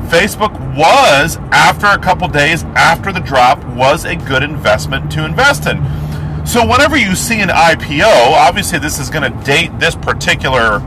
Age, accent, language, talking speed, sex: 40-59, American, English, 165 wpm, male